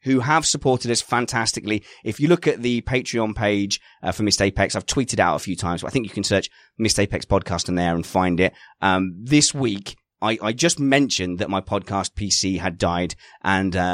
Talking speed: 215 wpm